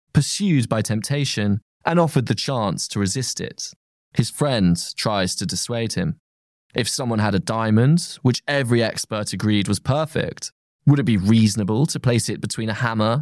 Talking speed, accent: 170 wpm, British